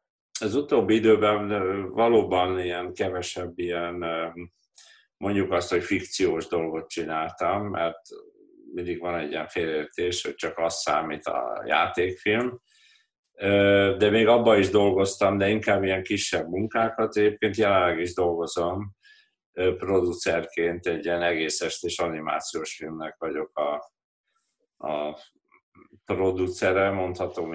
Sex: male